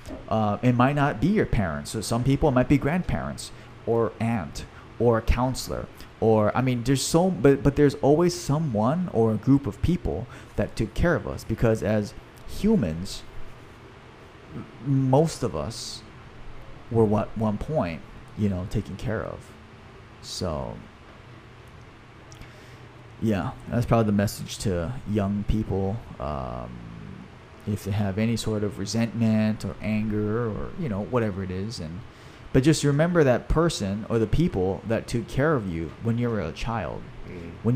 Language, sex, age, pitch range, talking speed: English, male, 30-49, 105-130 Hz, 155 wpm